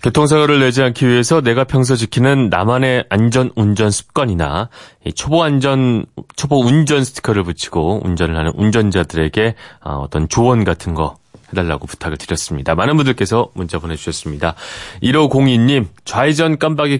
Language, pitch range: Korean, 90-140 Hz